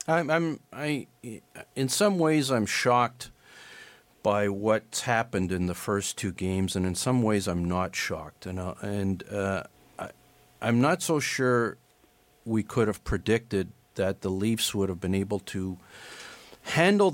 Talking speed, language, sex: 160 wpm, English, male